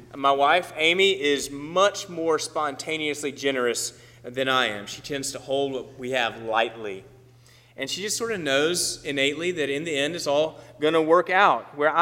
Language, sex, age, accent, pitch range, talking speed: English, male, 30-49, American, 125-160 Hz, 185 wpm